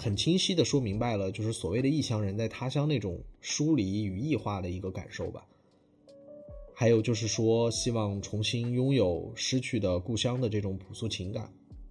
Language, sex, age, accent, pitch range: Chinese, male, 20-39, native, 100-130 Hz